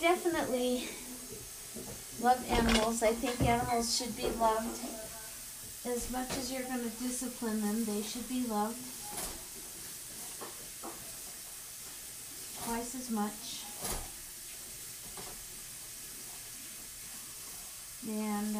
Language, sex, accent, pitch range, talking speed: English, female, American, 215-250 Hz, 80 wpm